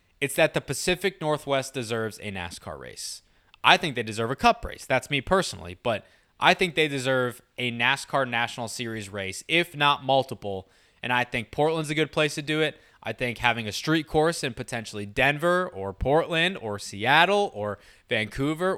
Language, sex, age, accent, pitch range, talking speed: English, male, 20-39, American, 115-155 Hz, 180 wpm